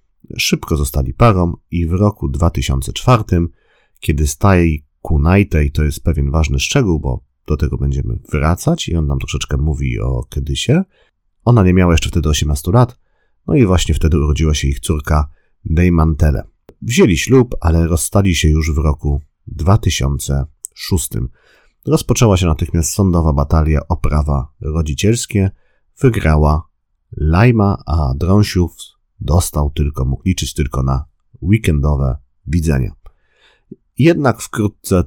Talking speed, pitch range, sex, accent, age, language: 130 wpm, 75-100 Hz, male, native, 30-49, Polish